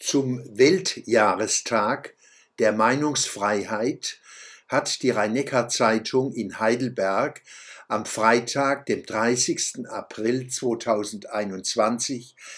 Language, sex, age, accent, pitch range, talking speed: German, male, 60-79, German, 110-145 Hz, 75 wpm